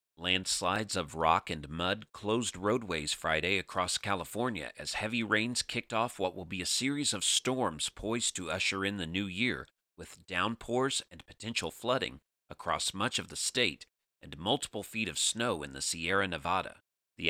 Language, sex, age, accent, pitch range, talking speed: English, male, 40-59, American, 85-110 Hz, 170 wpm